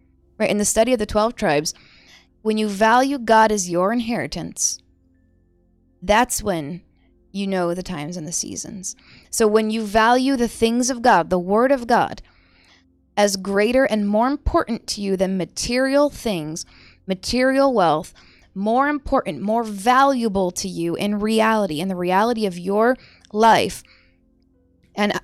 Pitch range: 185-230 Hz